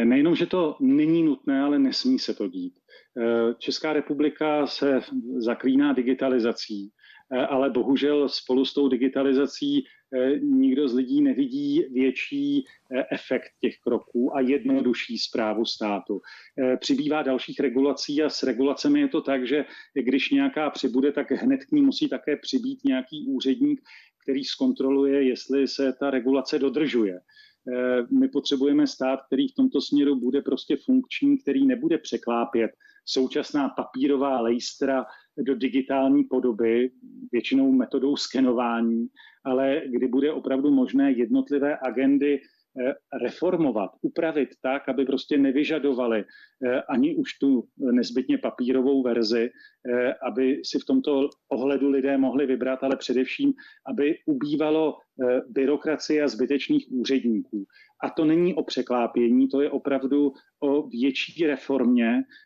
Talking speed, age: 125 wpm, 40-59